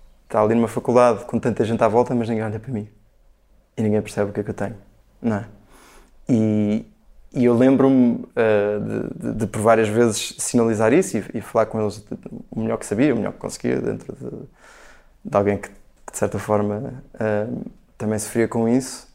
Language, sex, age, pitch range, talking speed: Portuguese, male, 20-39, 105-120 Hz, 205 wpm